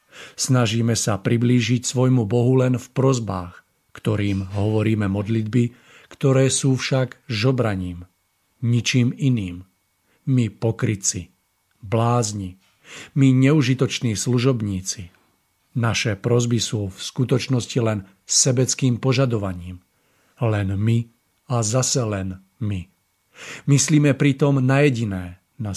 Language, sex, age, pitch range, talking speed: Slovak, male, 50-69, 105-130 Hz, 100 wpm